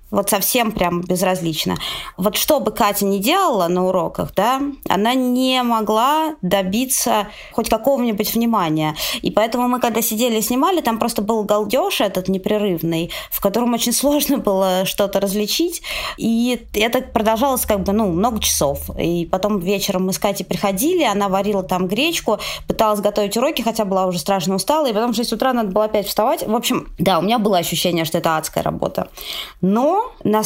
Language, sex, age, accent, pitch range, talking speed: Russian, female, 20-39, native, 185-235 Hz, 175 wpm